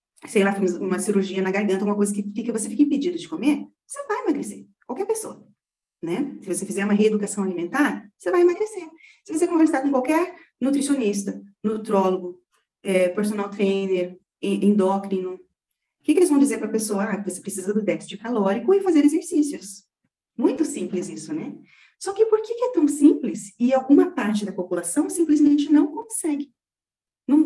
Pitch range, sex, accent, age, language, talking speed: 195-290 Hz, female, Brazilian, 30-49, Portuguese, 175 wpm